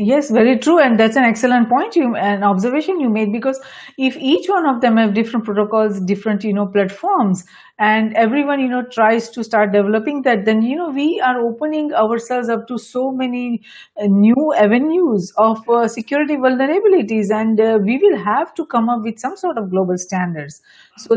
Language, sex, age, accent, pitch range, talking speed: English, female, 50-69, Indian, 220-280 Hz, 190 wpm